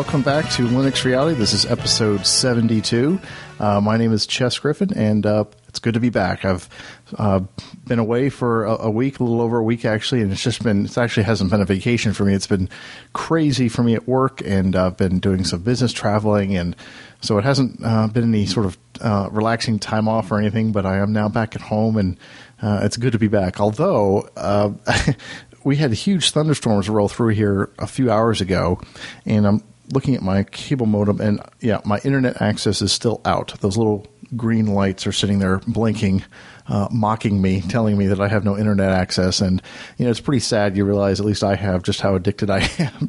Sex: male